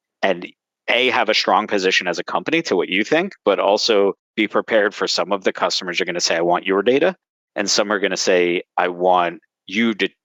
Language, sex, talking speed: English, male, 235 wpm